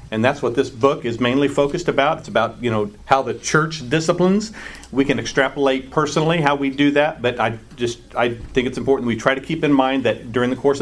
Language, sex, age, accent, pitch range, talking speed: English, male, 50-69, American, 110-145 Hz, 235 wpm